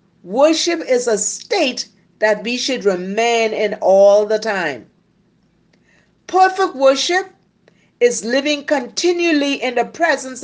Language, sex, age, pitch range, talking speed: English, female, 50-69, 195-270 Hz, 115 wpm